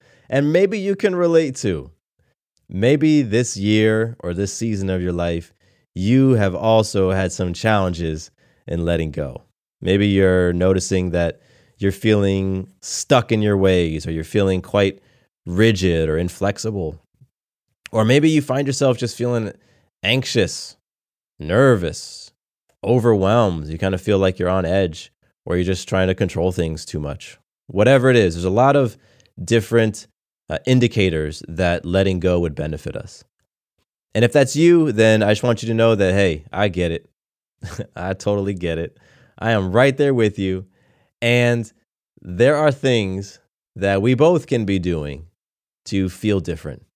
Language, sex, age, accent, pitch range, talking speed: English, male, 20-39, American, 90-120 Hz, 155 wpm